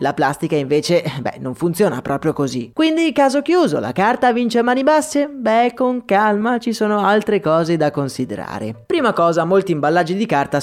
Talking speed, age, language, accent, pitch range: 180 wpm, 20-39, Italian, native, 150-220 Hz